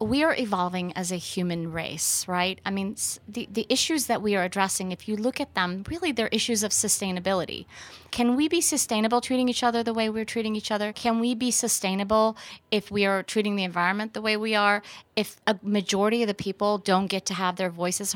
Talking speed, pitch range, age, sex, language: 220 wpm, 190-235 Hz, 30-49, female, English